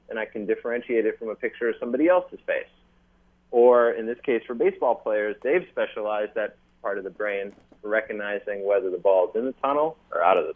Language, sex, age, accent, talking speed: English, male, 30-49, American, 215 wpm